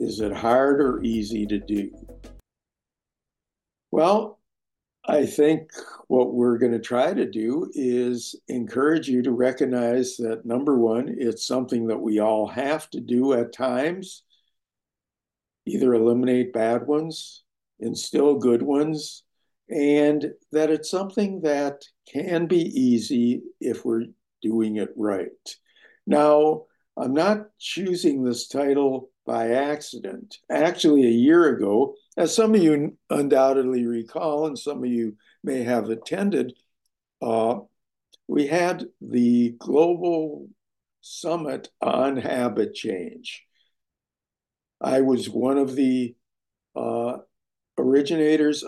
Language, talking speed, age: English, 120 wpm, 60-79